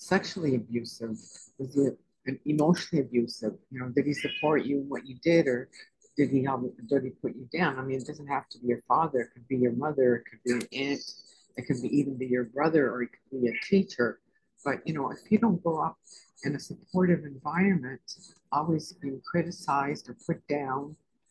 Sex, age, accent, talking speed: female, 60-79, American, 220 wpm